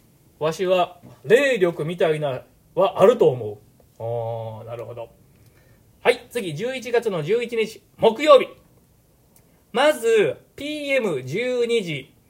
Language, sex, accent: Japanese, male, native